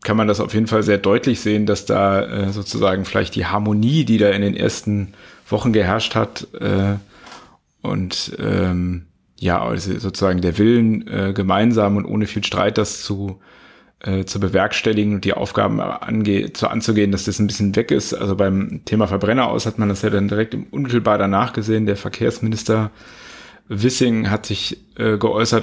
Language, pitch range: German, 100-115 Hz